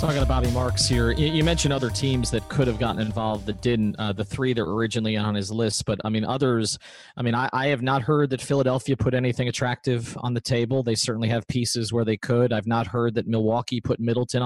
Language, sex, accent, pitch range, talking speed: English, male, American, 115-140 Hz, 240 wpm